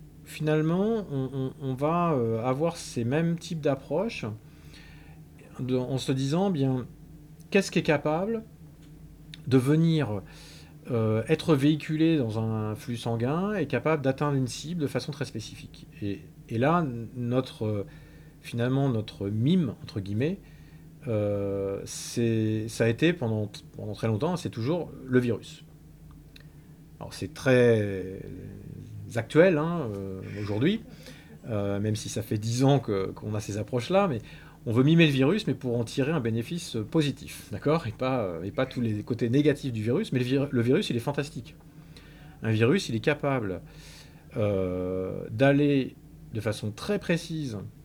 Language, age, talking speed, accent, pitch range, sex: French, 40-59, 150 wpm, French, 110-155 Hz, male